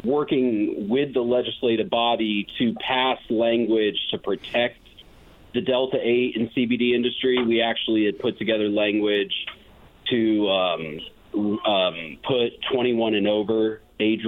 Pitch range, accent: 100-115 Hz, American